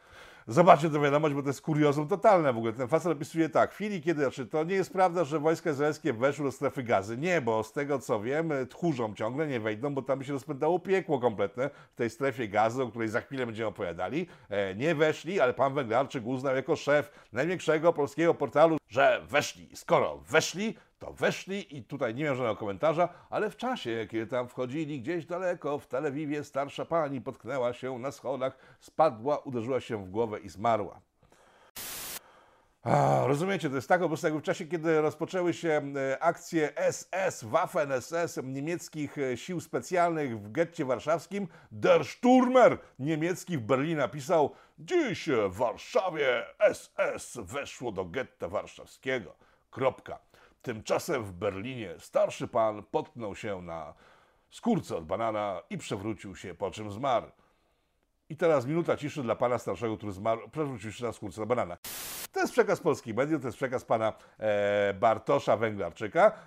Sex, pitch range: male, 125-165 Hz